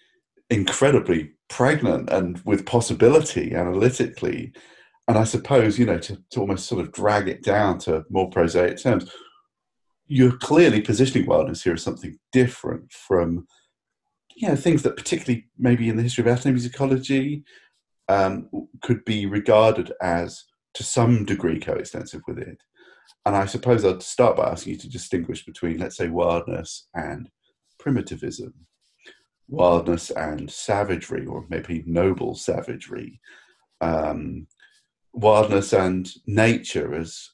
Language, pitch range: English, 90-125 Hz